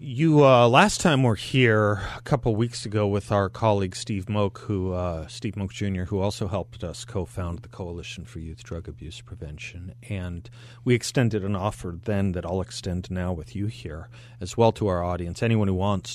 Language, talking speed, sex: English, 195 wpm, male